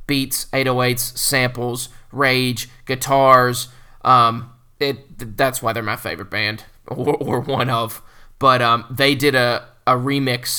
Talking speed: 140 wpm